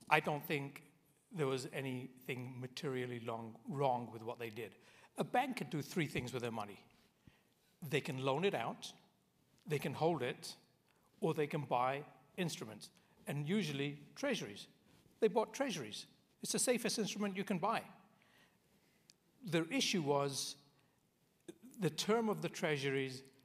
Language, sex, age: English, male, 60-79